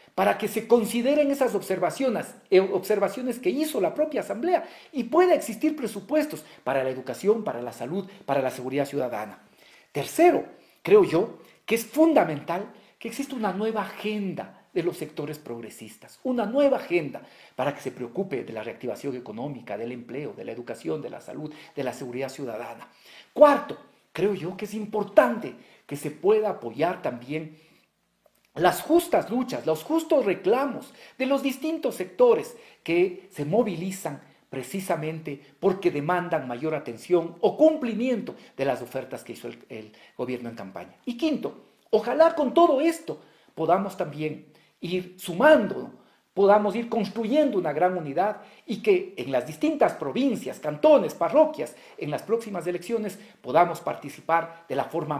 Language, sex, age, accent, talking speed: Spanish, male, 50-69, Mexican, 150 wpm